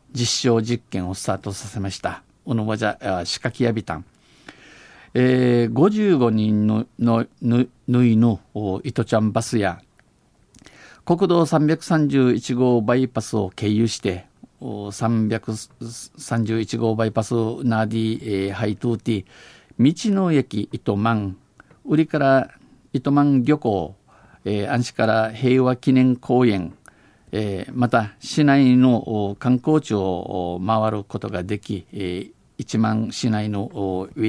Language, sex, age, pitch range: Japanese, male, 50-69, 105-125 Hz